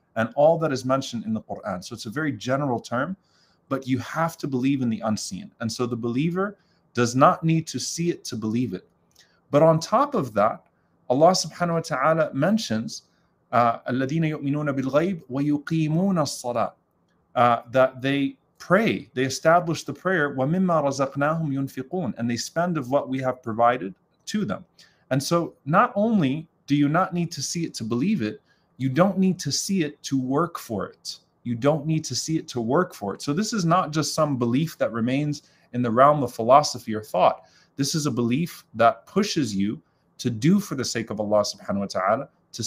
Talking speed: 190 wpm